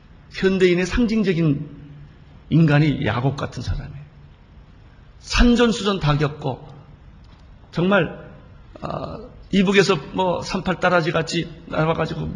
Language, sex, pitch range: Korean, male, 115-170 Hz